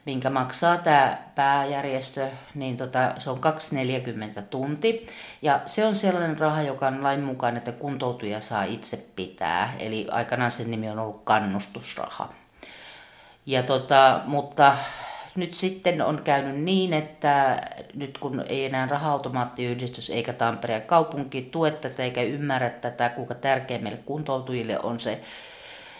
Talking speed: 135 wpm